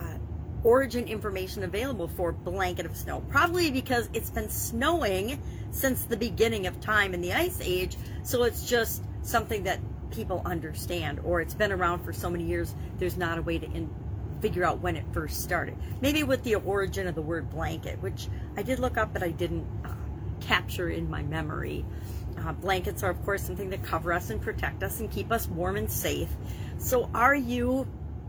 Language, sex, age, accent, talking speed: English, female, 40-59, American, 190 wpm